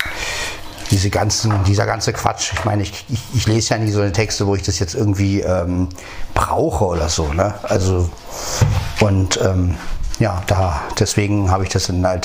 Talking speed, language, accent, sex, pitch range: 180 wpm, German, German, male, 95-115 Hz